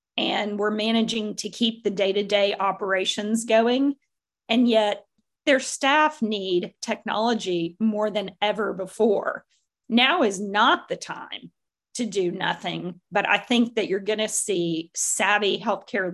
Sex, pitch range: female, 195-235 Hz